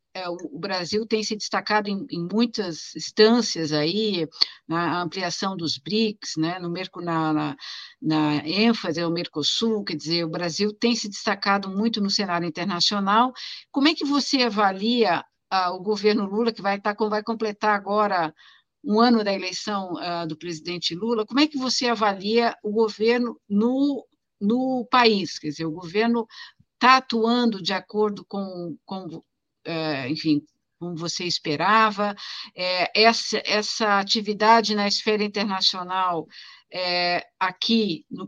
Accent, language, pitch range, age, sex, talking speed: Brazilian, Portuguese, 175-225 Hz, 50-69, female, 130 wpm